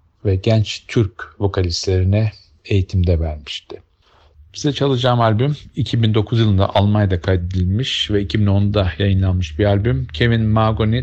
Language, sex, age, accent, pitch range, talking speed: Turkish, male, 50-69, native, 80-110 Hz, 110 wpm